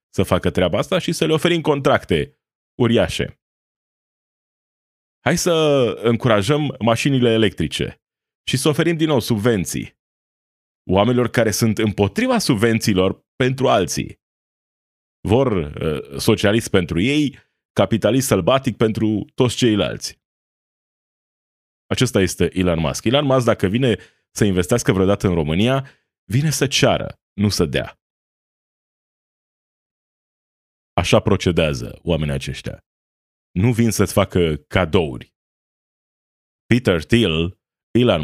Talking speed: 105 wpm